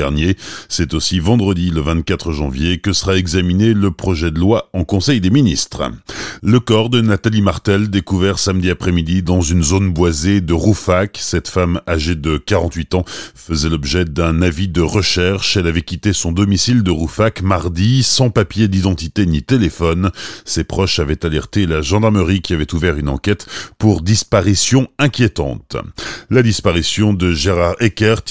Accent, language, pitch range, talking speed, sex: French, French, 90-115 Hz, 160 wpm, male